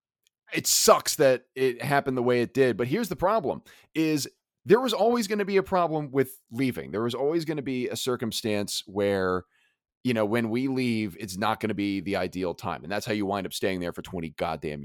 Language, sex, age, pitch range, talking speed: English, male, 30-49, 100-130 Hz, 230 wpm